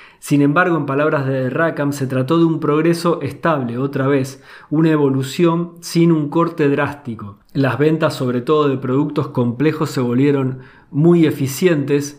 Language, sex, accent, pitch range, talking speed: Spanish, male, Argentinian, 130-165 Hz, 155 wpm